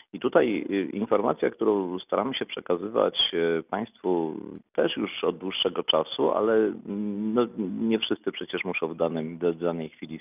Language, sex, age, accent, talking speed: Polish, male, 40-59, native, 130 wpm